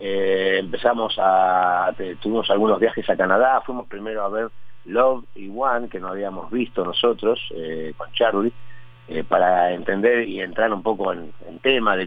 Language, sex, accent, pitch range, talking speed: Spanish, male, Argentinian, 95-125 Hz, 175 wpm